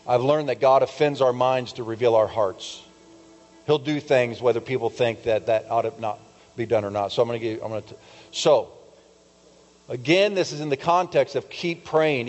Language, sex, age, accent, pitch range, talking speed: English, male, 40-59, American, 110-135 Hz, 210 wpm